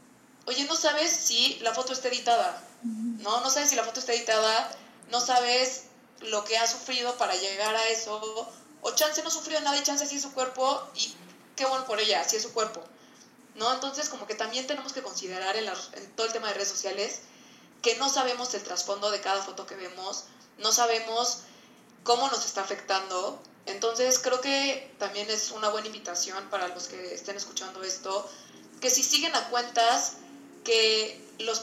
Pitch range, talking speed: 200-255 Hz, 190 wpm